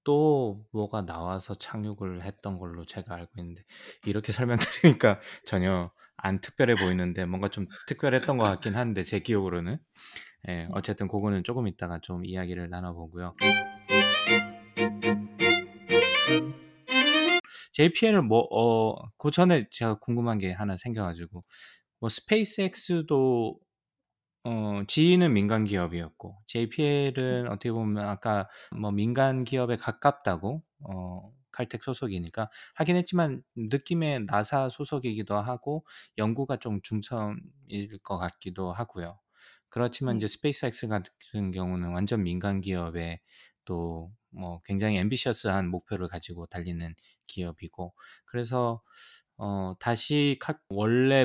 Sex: male